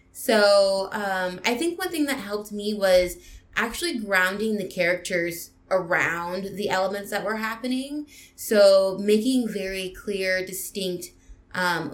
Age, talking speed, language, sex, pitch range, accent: 20-39, 130 wpm, English, female, 170-210 Hz, American